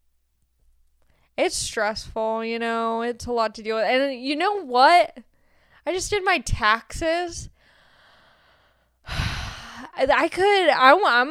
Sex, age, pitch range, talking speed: female, 10-29, 225-310 Hz, 125 wpm